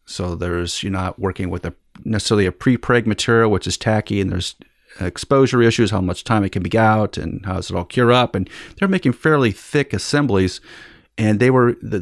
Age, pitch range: 40-59, 95-120 Hz